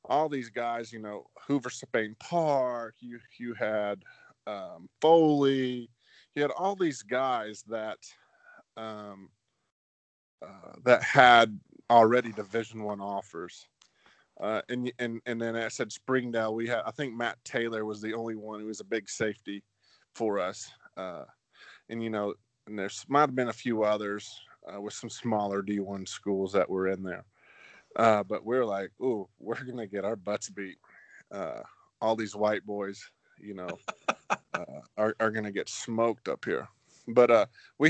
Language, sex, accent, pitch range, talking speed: English, male, American, 105-120 Hz, 165 wpm